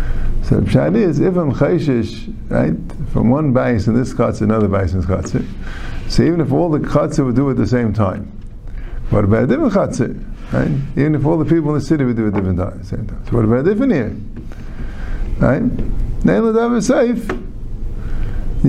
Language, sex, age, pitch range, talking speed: English, male, 50-69, 110-160 Hz, 185 wpm